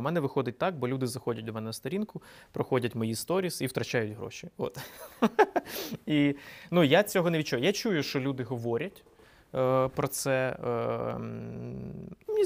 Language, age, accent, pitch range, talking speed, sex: Ukrainian, 20-39, native, 115-145 Hz, 145 wpm, male